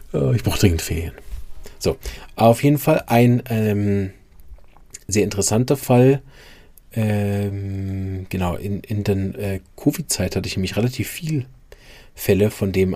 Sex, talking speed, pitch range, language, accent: male, 130 wpm, 100-125 Hz, German, German